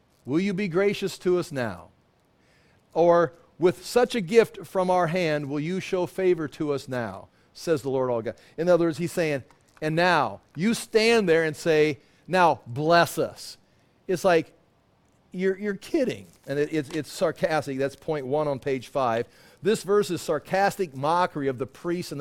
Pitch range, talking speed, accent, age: 150-205 Hz, 180 wpm, American, 50-69